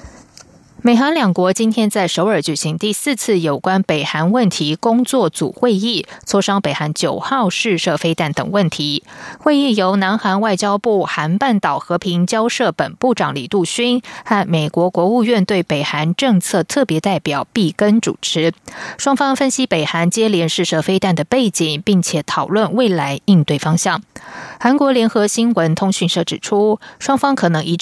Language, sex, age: German, female, 20-39